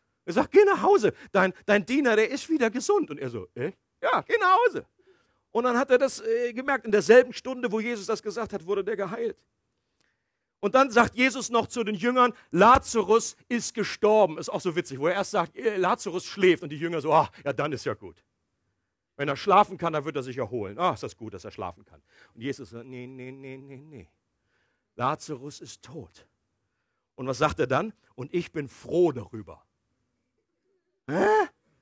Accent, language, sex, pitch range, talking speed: German, German, male, 185-275 Hz, 205 wpm